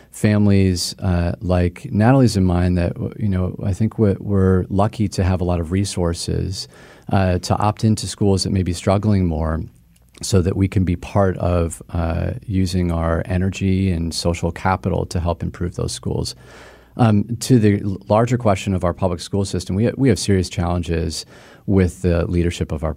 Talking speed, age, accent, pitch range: 180 wpm, 40-59, American, 85-100 Hz